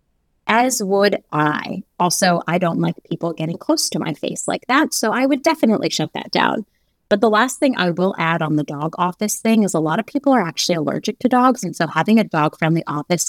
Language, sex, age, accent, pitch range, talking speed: English, female, 30-49, American, 160-225 Hz, 230 wpm